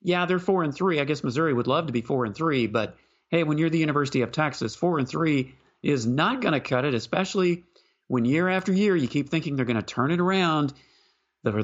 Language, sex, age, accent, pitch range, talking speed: English, male, 50-69, American, 135-190 Hz, 240 wpm